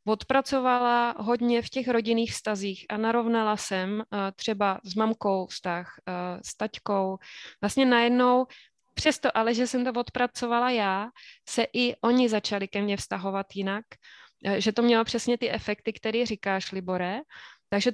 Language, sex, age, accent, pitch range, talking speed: Czech, female, 20-39, native, 200-230 Hz, 140 wpm